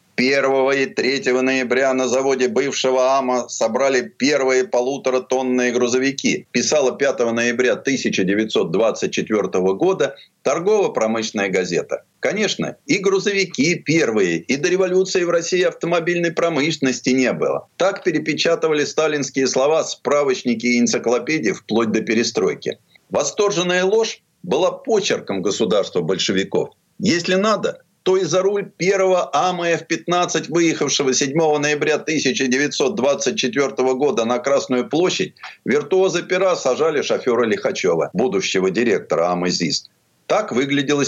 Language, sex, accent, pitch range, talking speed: Russian, male, native, 130-180 Hz, 110 wpm